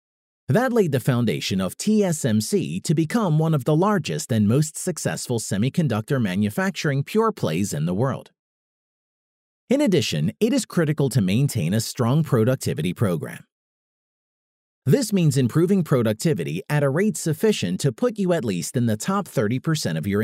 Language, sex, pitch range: English, male, 130-195 Hz